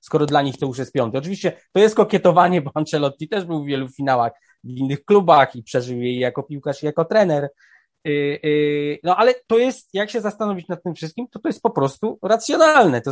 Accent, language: native, Polish